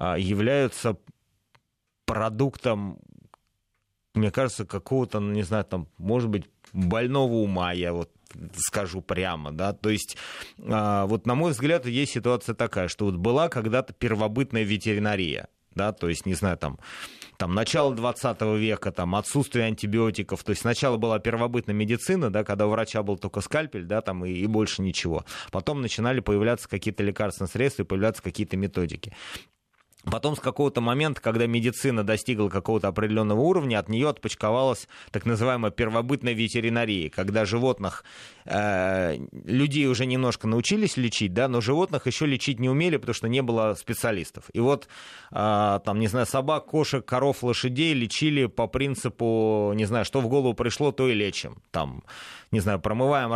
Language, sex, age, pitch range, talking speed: Russian, male, 30-49, 100-125 Hz, 140 wpm